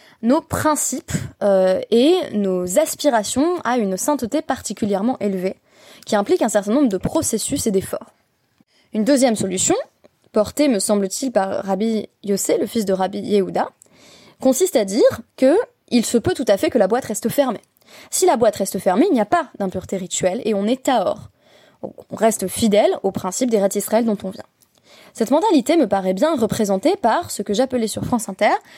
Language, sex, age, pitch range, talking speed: French, female, 20-39, 200-280 Hz, 185 wpm